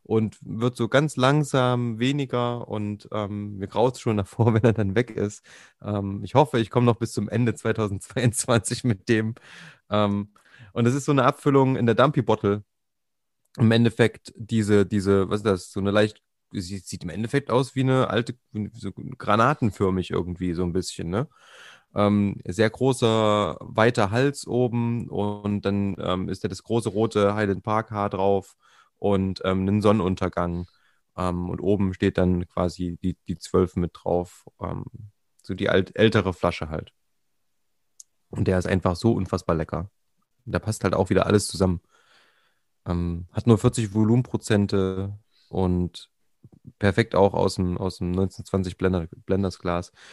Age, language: 30-49, German